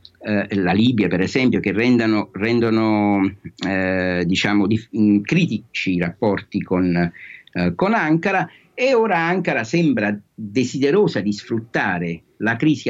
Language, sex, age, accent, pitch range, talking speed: Italian, male, 50-69, native, 95-125 Hz, 125 wpm